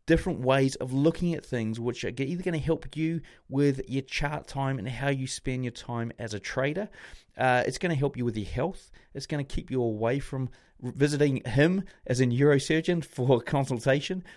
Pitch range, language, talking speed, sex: 120-150 Hz, English, 205 wpm, male